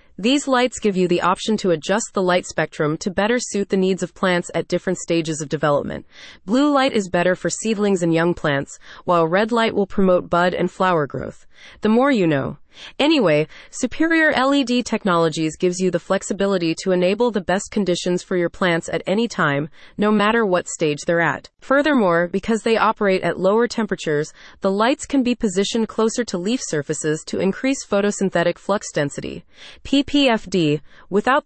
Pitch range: 170-225 Hz